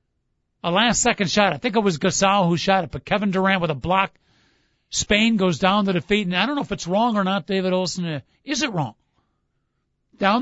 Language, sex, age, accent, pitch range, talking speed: English, male, 50-69, American, 170-220 Hz, 215 wpm